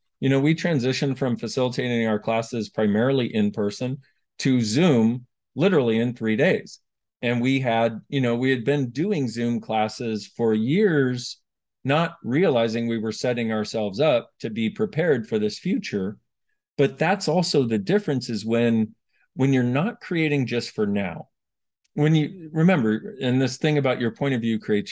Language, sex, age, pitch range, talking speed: English, male, 40-59, 115-150 Hz, 165 wpm